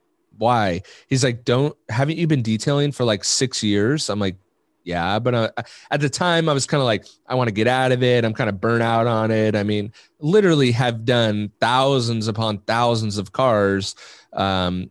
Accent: American